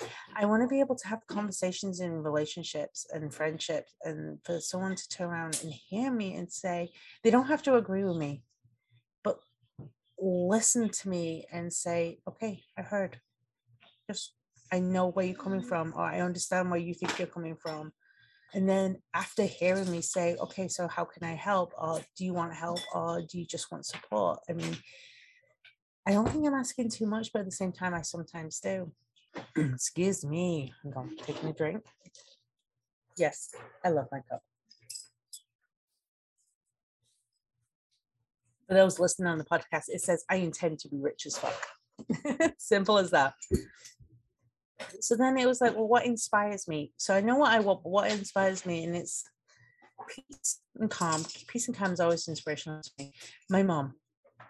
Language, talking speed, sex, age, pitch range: English, 175 wpm, female, 30-49, 150-195 Hz